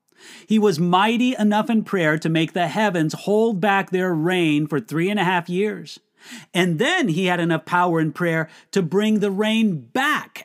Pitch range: 165-230 Hz